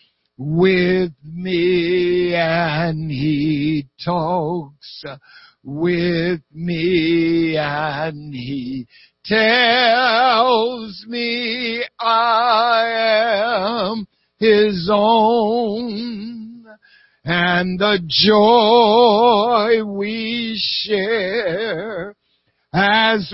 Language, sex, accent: English, male, American